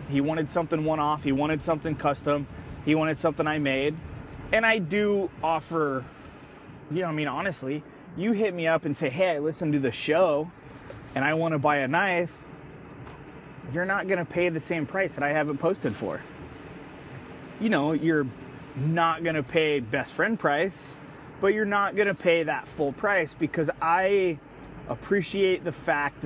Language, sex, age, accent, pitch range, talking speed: English, male, 30-49, American, 140-175 Hz, 180 wpm